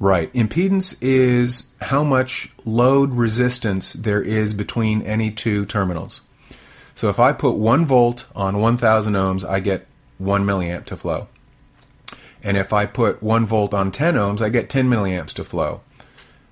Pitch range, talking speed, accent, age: 100-125 Hz, 155 wpm, American, 40-59